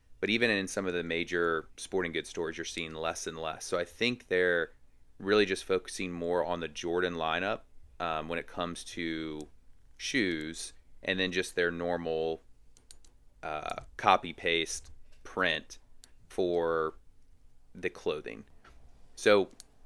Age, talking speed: 30-49, 135 wpm